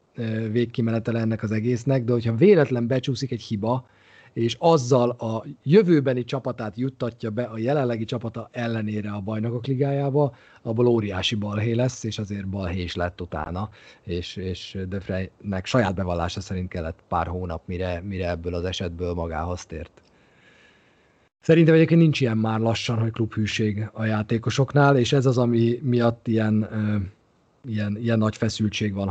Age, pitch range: 30-49, 100-130 Hz